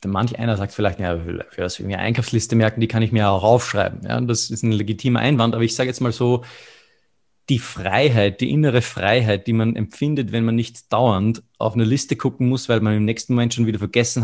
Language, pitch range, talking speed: German, 110-125 Hz, 235 wpm